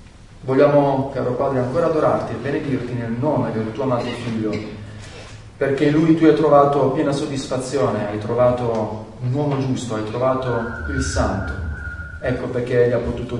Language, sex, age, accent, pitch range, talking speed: Italian, male, 40-59, native, 105-135 Hz, 150 wpm